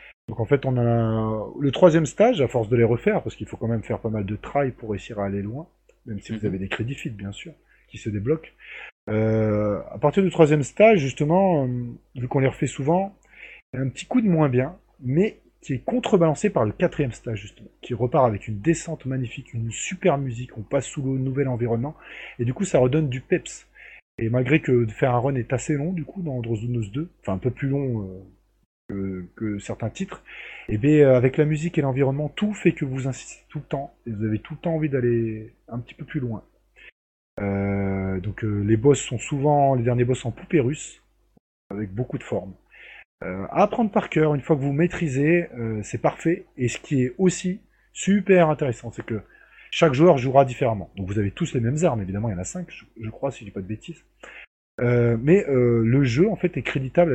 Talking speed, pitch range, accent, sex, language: 230 wpm, 115-155 Hz, French, male, French